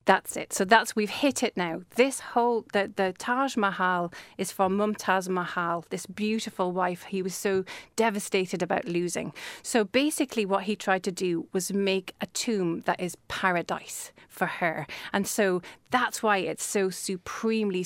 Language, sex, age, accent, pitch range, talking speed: English, female, 30-49, British, 185-220 Hz, 170 wpm